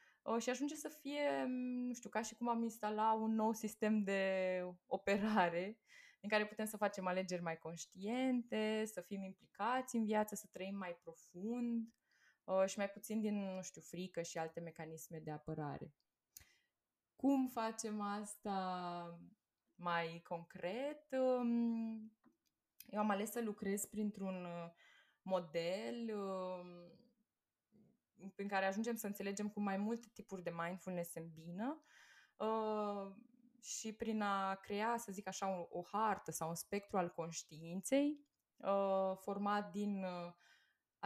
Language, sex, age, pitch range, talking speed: Romanian, female, 20-39, 170-220 Hz, 130 wpm